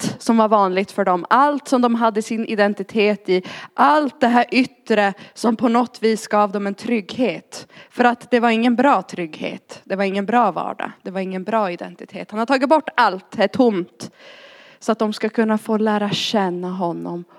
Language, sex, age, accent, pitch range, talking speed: Swedish, female, 20-39, native, 205-280 Hz, 200 wpm